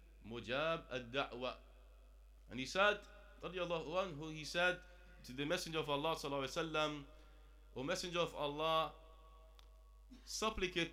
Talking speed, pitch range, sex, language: 95 wpm, 120-165 Hz, male, English